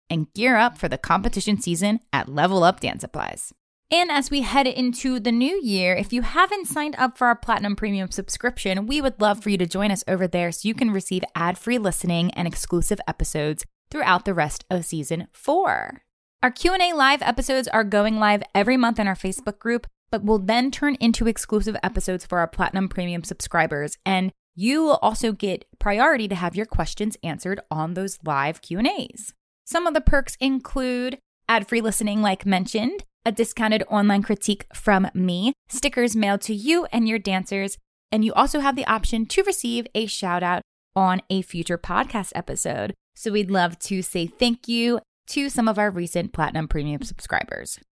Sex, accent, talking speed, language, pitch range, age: female, American, 185 wpm, English, 185-240 Hz, 20-39